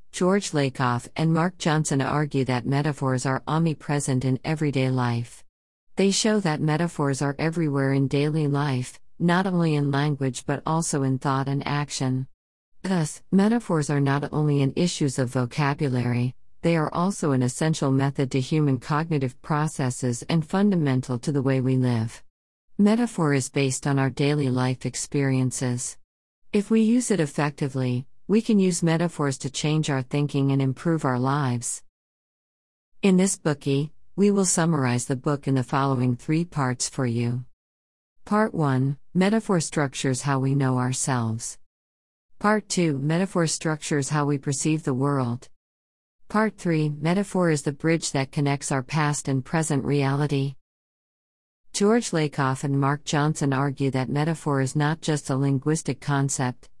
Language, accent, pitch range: English, American, 130-160 Hz